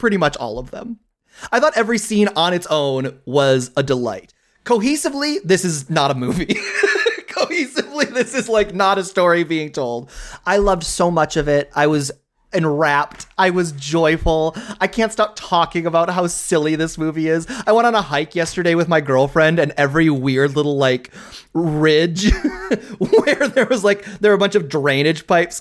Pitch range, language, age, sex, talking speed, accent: 150-230 Hz, English, 30-49, male, 185 wpm, American